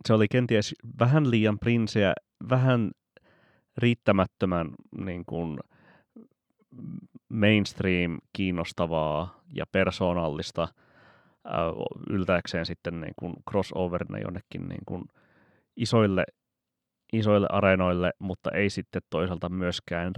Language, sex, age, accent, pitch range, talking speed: Finnish, male, 30-49, native, 85-105 Hz, 75 wpm